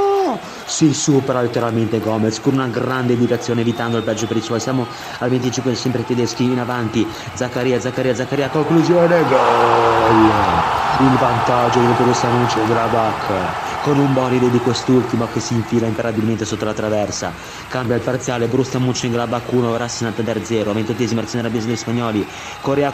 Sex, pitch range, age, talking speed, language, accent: male, 115-150 Hz, 30-49, 155 wpm, Italian, native